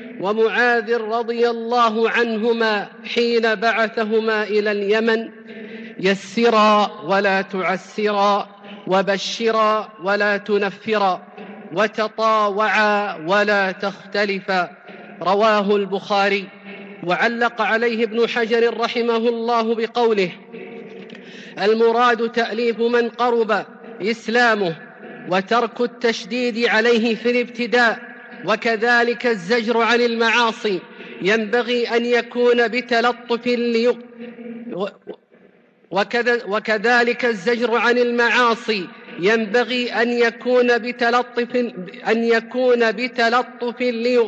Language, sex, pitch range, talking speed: English, male, 215-245 Hz, 75 wpm